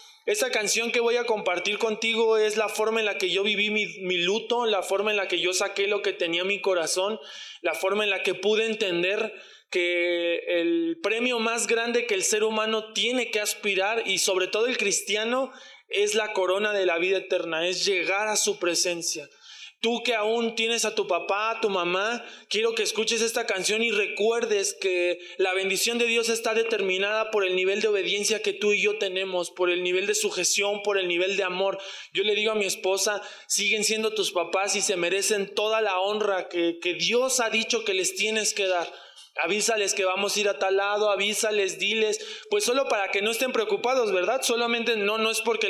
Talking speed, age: 210 wpm, 20-39